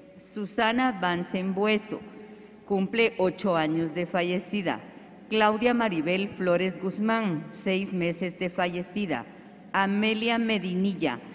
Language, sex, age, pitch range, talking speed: Spanish, female, 40-59, 175-215 Hz, 95 wpm